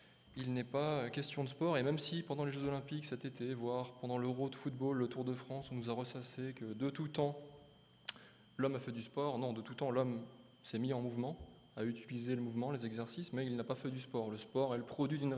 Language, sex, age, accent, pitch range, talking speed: French, male, 20-39, French, 120-145 Hz, 255 wpm